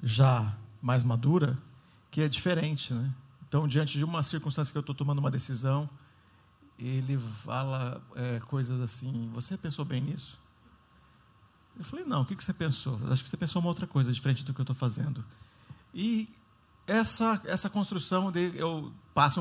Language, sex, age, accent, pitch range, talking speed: Portuguese, male, 50-69, Brazilian, 125-155 Hz, 170 wpm